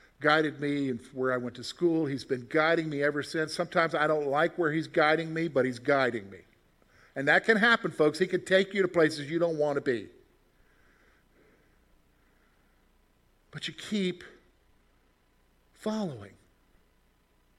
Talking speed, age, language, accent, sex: 155 wpm, 50-69, English, American, male